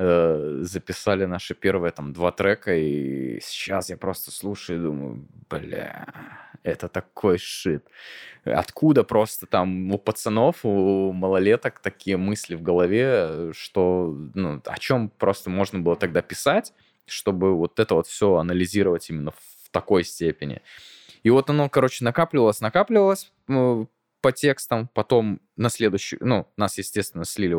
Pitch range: 90-115 Hz